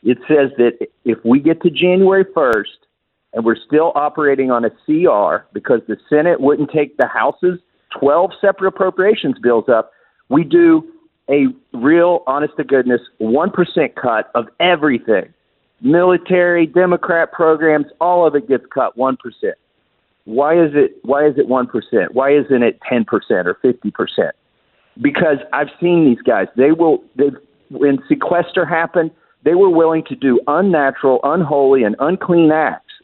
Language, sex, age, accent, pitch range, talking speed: English, male, 50-69, American, 135-180 Hz, 145 wpm